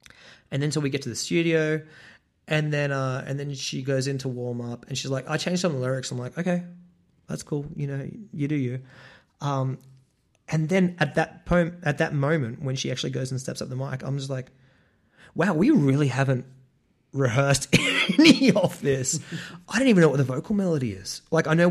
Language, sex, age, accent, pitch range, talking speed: English, male, 30-49, Australian, 125-155 Hz, 220 wpm